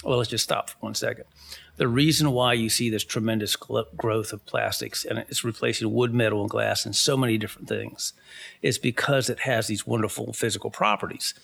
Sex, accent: male, American